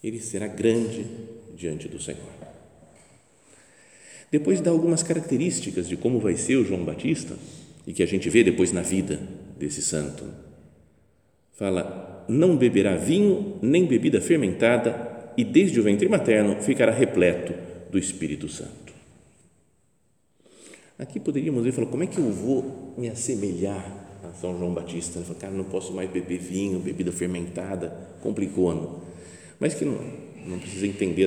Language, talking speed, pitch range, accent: Portuguese, 145 wpm, 90-120 Hz, Brazilian